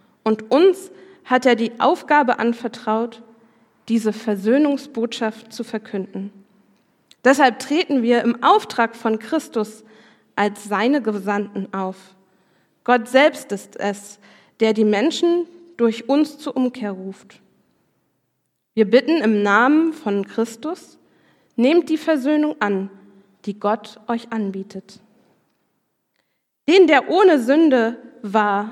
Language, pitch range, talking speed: German, 215-280 Hz, 110 wpm